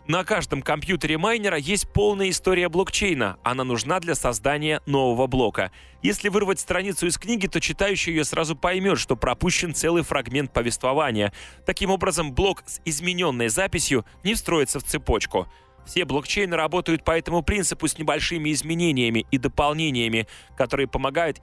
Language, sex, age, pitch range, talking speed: Russian, male, 20-39, 130-180 Hz, 145 wpm